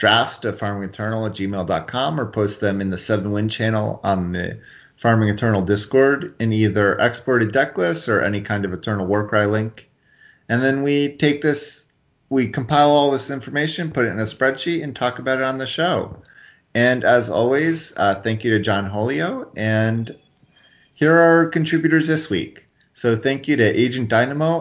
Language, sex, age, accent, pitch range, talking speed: English, male, 30-49, American, 105-140 Hz, 180 wpm